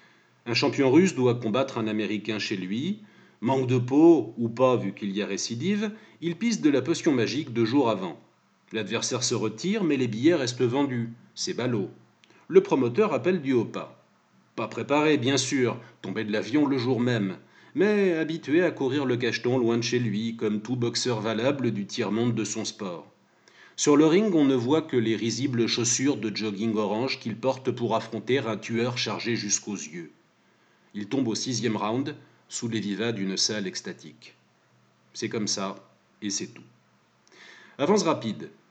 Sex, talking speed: male, 175 wpm